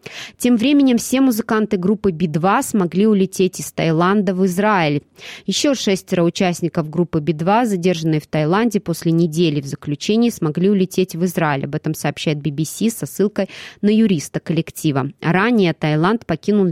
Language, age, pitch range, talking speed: Russian, 20-39, 160-210 Hz, 145 wpm